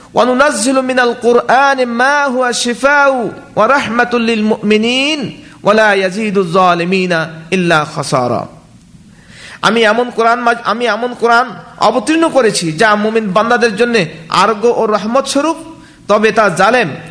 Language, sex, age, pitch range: Bengali, male, 50-69, 185-245 Hz